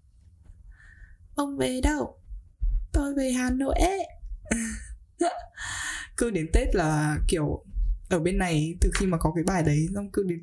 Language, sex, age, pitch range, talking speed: Vietnamese, female, 10-29, 155-215 Hz, 150 wpm